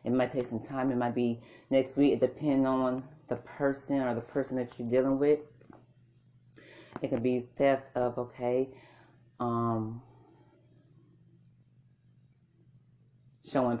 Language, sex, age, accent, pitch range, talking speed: English, female, 30-49, American, 120-130 Hz, 130 wpm